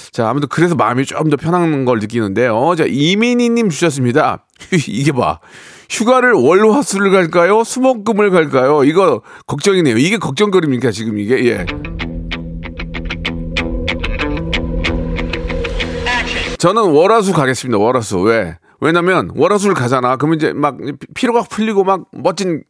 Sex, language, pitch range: male, Korean, 135-215 Hz